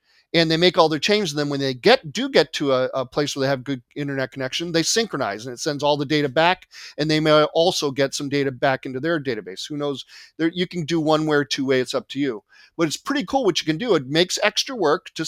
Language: English